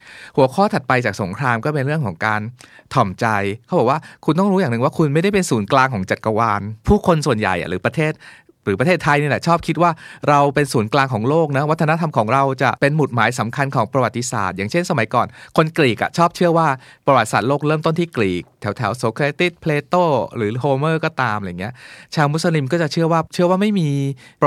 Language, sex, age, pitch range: Thai, male, 20-39, 115-155 Hz